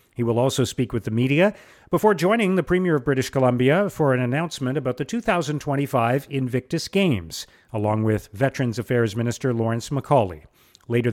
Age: 40-59